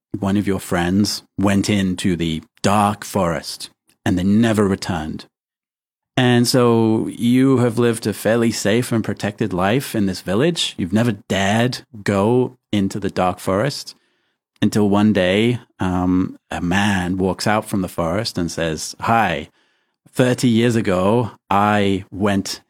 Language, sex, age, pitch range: Chinese, male, 30-49, 95-115 Hz